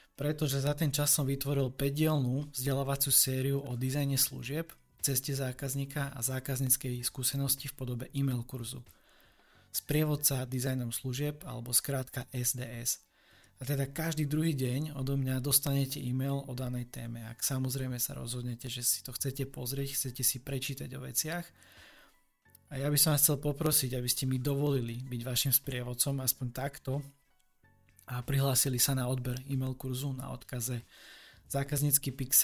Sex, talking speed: male, 145 wpm